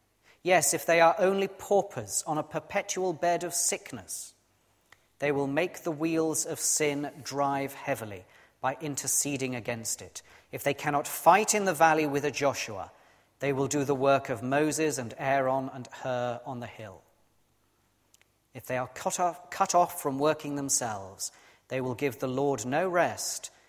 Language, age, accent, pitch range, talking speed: English, 40-59, British, 115-160 Hz, 165 wpm